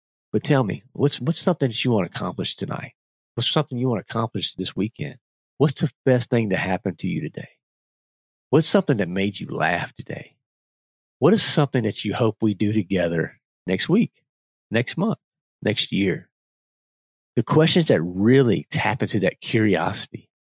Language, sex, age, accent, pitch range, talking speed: English, male, 40-59, American, 95-125 Hz, 175 wpm